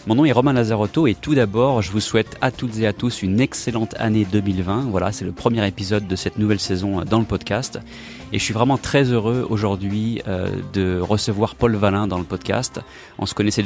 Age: 30-49